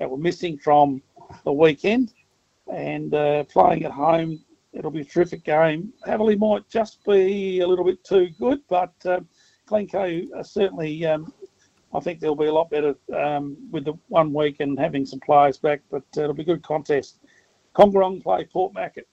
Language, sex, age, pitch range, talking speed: English, male, 50-69, 150-190 Hz, 185 wpm